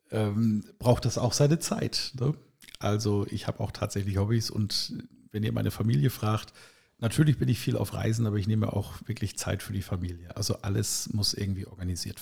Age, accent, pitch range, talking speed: 50-69, German, 100-120 Hz, 185 wpm